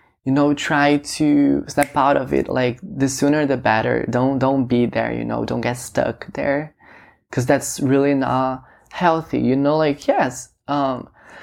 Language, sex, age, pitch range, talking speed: English, male, 20-39, 125-145 Hz, 175 wpm